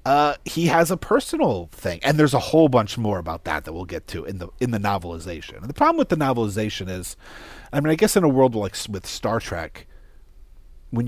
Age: 40-59